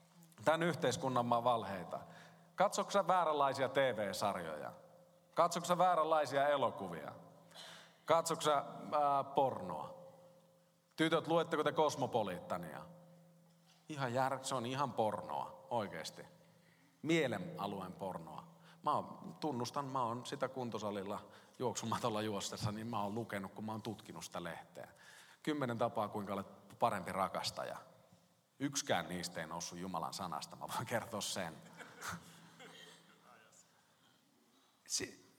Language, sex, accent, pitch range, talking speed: Finnish, male, native, 135-180 Hz, 105 wpm